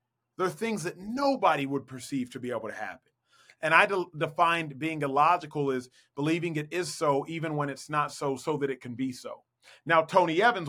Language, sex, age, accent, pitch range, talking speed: English, male, 30-49, American, 130-165 Hz, 210 wpm